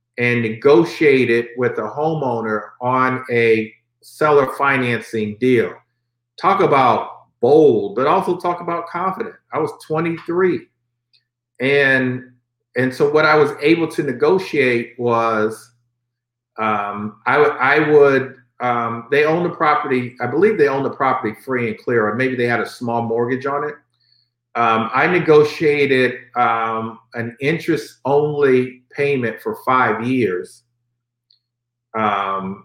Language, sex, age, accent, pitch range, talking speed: English, male, 50-69, American, 120-140 Hz, 130 wpm